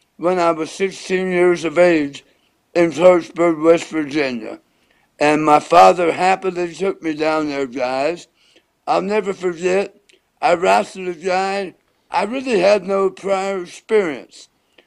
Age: 60-79